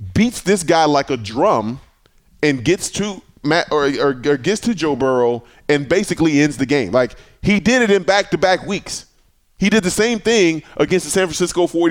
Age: 20-39